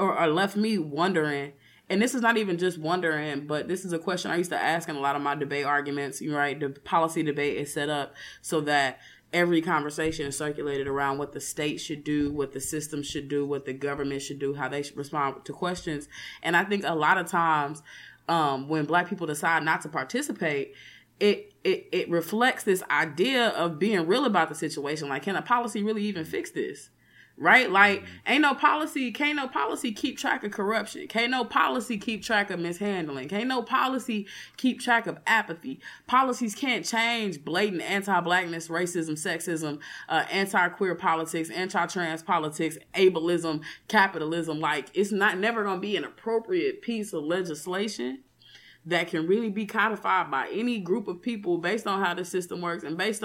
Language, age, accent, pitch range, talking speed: English, 20-39, American, 150-210 Hz, 190 wpm